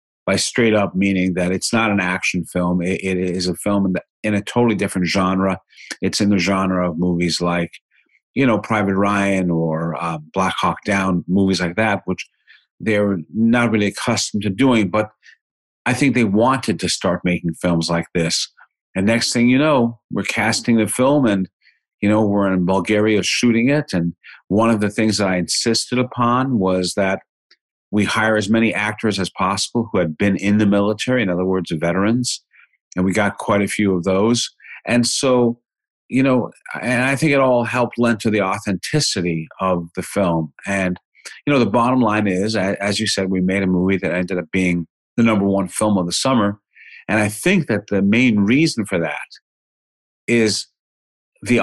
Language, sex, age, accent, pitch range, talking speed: English, male, 50-69, American, 90-115 Hz, 190 wpm